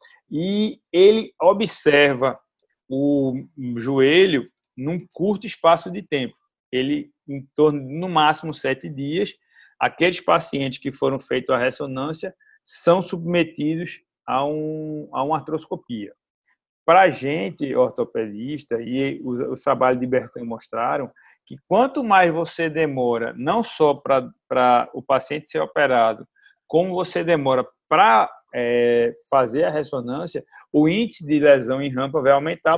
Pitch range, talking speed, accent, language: 135-180 Hz, 125 wpm, Brazilian, Portuguese